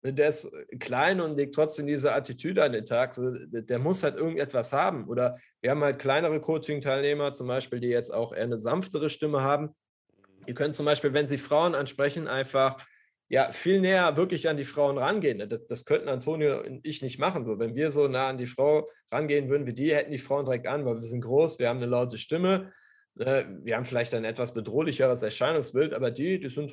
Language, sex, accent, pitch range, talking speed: German, male, German, 125-155 Hz, 210 wpm